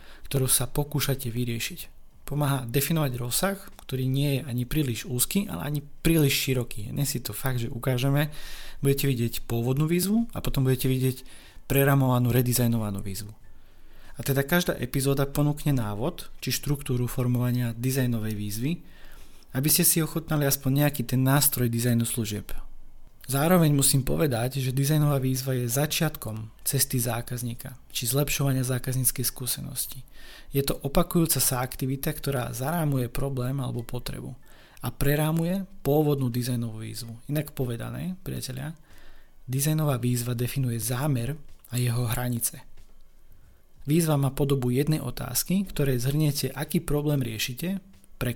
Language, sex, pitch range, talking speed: Slovak, male, 125-145 Hz, 130 wpm